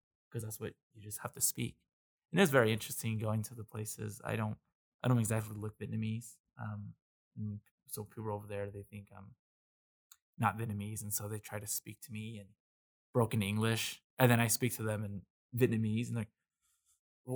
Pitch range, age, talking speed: 105-125 Hz, 20-39, 195 wpm